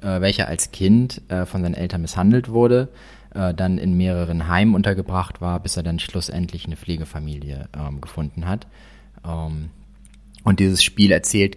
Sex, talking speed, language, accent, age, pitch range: male, 155 wpm, German, German, 30-49, 85-100 Hz